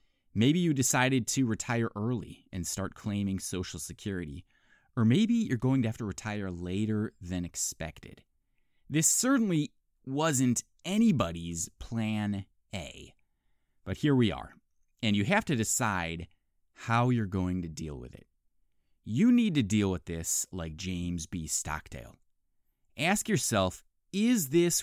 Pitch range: 90-135 Hz